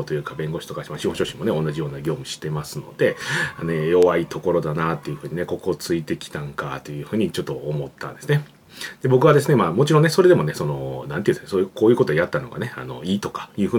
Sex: male